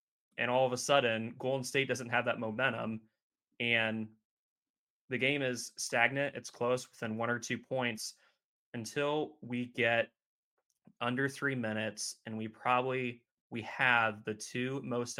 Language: English